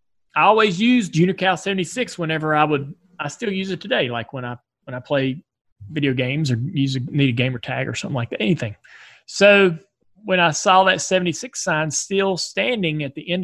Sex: male